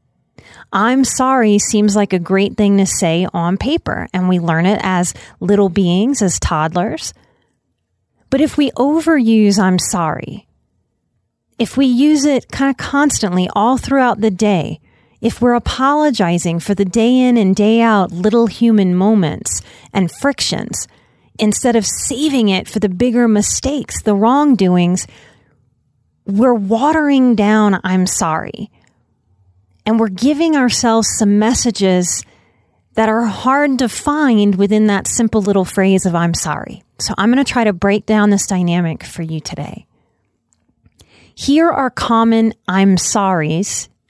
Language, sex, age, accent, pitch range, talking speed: English, female, 30-49, American, 185-240 Hz, 140 wpm